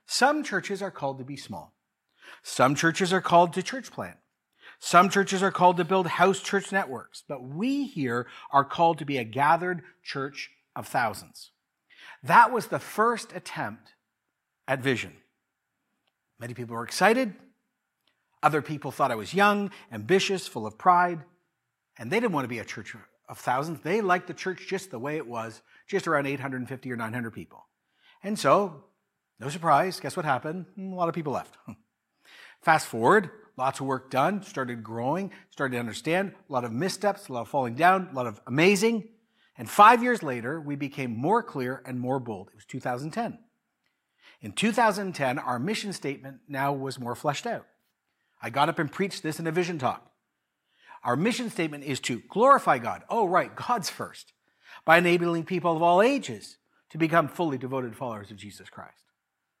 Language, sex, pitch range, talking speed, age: English, male, 135-195 Hz, 175 wpm, 50-69